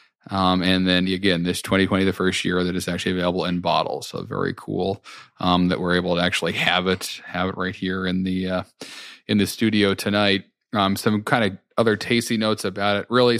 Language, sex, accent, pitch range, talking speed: English, male, American, 95-105 Hz, 210 wpm